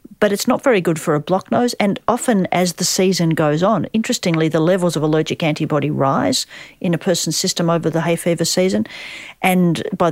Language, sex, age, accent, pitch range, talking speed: English, female, 40-59, Australian, 155-190 Hz, 200 wpm